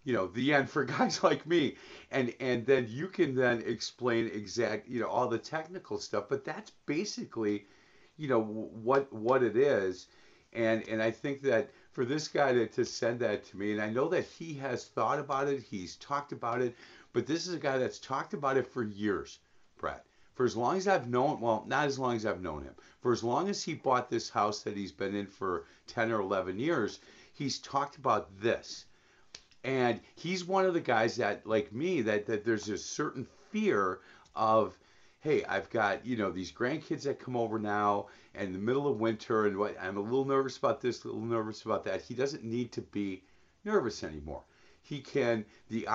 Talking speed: 210 wpm